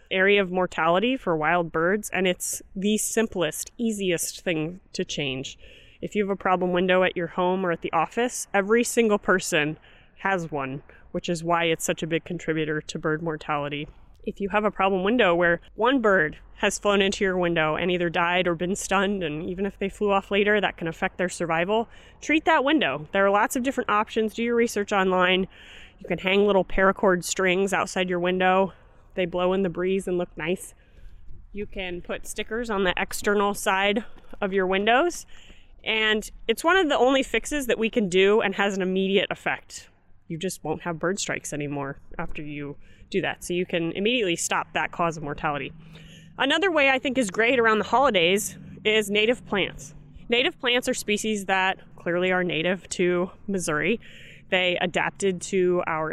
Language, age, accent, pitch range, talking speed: English, 30-49, American, 170-210 Hz, 190 wpm